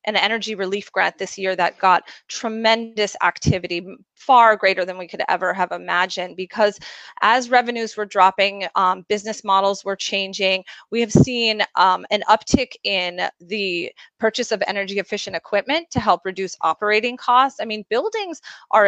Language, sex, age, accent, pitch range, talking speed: English, female, 30-49, American, 185-215 Hz, 160 wpm